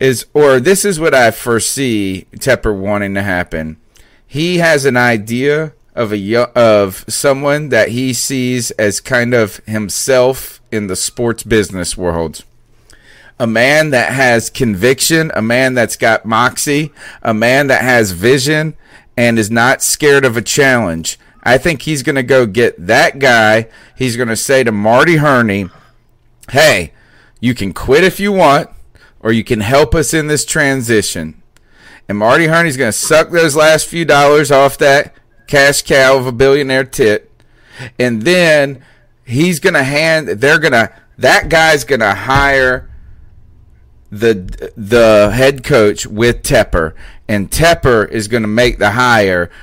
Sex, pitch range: male, 110-140 Hz